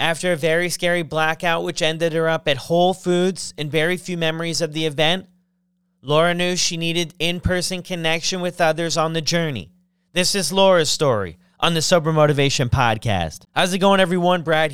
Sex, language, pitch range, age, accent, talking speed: male, English, 165-180 Hz, 30-49, American, 180 wpm